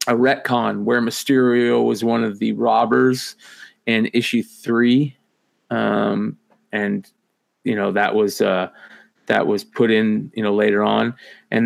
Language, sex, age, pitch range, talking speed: English, male, 30-49, 110-150 Hz, 145 wpm